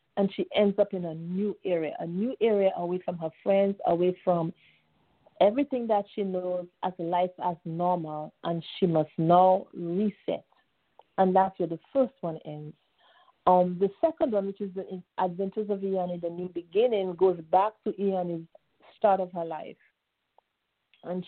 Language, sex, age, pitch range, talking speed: English, female, 50-69, 175-200 Hz, 165 wpm